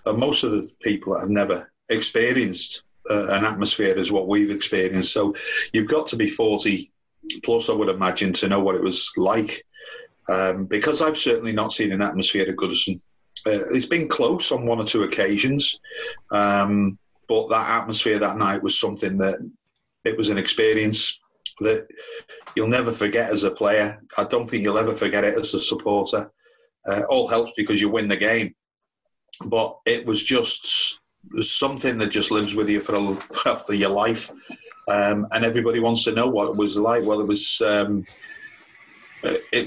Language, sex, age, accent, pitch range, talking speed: English, male, 40-59, British, 105-140 Hz, 175 wpm